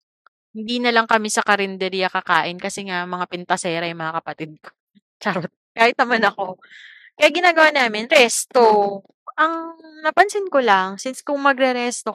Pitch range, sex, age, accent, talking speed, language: 180-245 Hz, female, 20-39, native, 155 wpm, Filipino